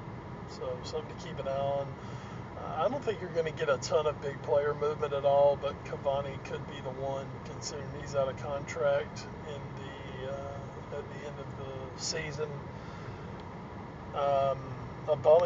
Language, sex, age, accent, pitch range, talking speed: English, male, 40-59, American, 140-165 Hz, 170 wpm